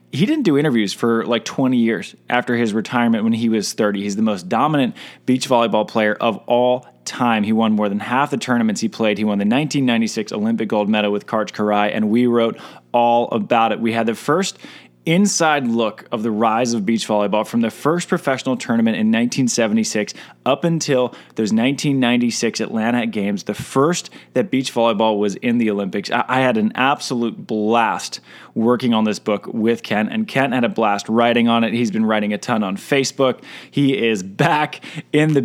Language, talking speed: English, 195 wpm